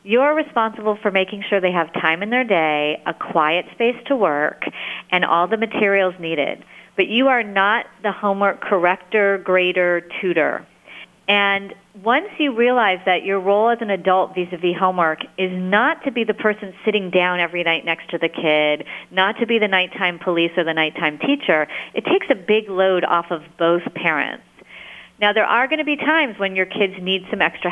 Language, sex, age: English, female, 40-59